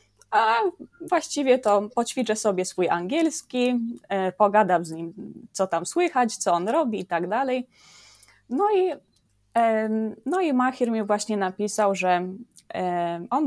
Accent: native